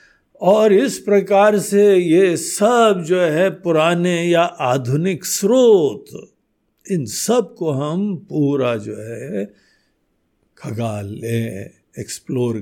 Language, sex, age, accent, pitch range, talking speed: Hindi, male, 60-79, native, 125-205 Hz, 100 wpm